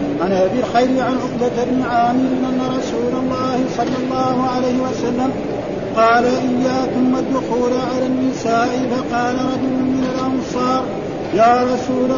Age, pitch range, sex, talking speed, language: 50-69, 250-265 Hz, male, 115 wpm, Arabic